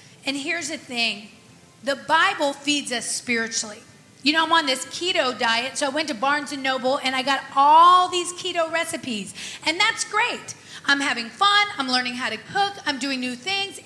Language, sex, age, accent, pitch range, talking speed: English, female, 30-49, American, 245-330 Hz, 195 wpm